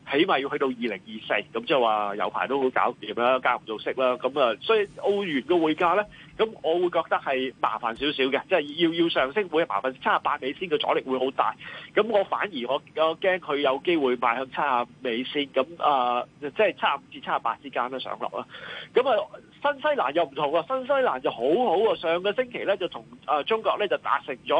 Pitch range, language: 140-200 Hz, Chinese